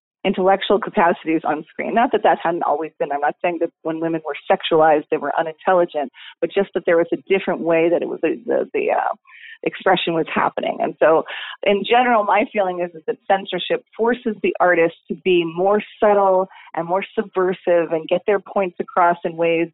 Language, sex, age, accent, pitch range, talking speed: English, female, 30-49, American, 170-220 Hz, 200 wpm